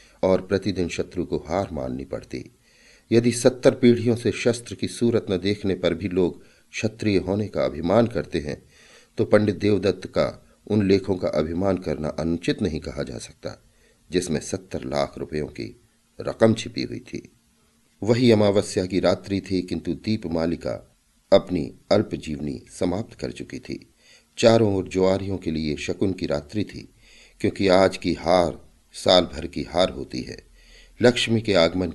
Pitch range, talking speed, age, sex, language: 85-110 Hz, 160 wpm, 50-69, male, Hindi